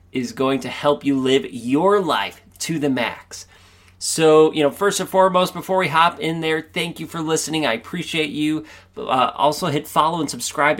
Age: 30-49